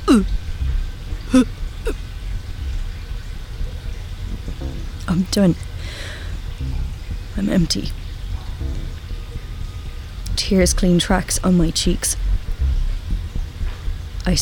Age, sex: 30-49, female